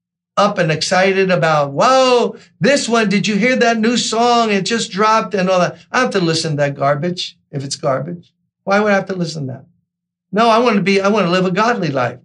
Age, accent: 50-69, American